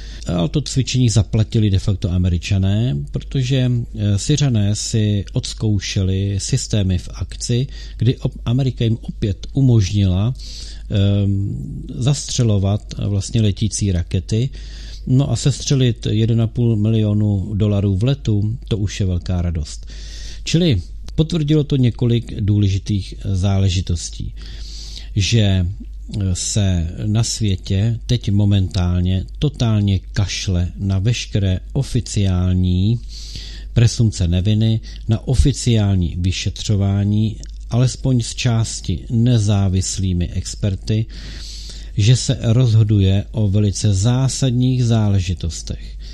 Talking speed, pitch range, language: 90 wpm, 95-115 Hz, Czech